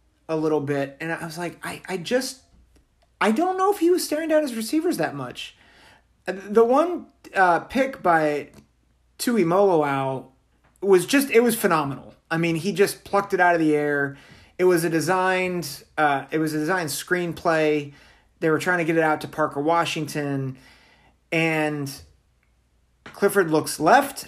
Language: English